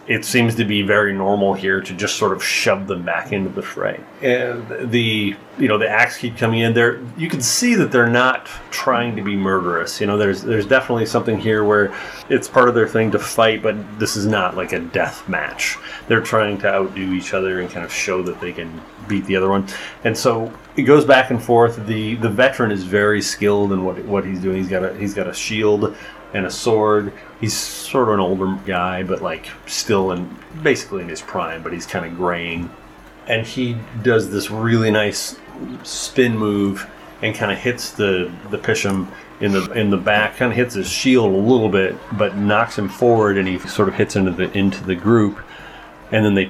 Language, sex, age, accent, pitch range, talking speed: English, male, 30-49, American, 95-115 Hz, 220 wpm